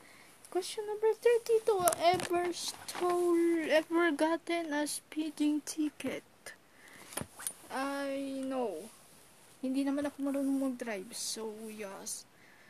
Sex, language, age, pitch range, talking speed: female, English, 20-39, 275-360 Hz, 90 wpm